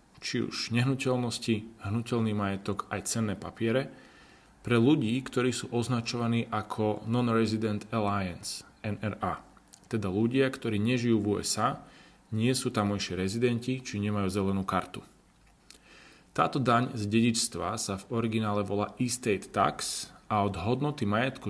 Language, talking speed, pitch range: Slovak, 130 wpm, 100-120 Hz